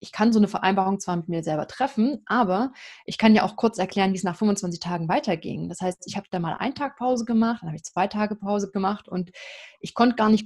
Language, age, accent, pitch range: German, 20-39, German, 195-240 Hz